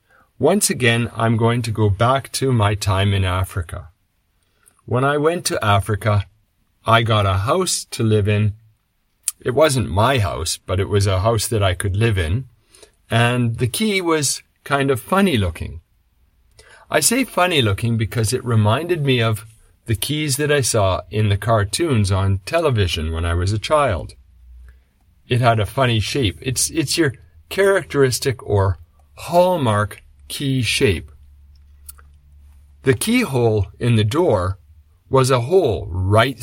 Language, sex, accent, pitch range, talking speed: English, male, American, 95-130 Hz, 150 wpm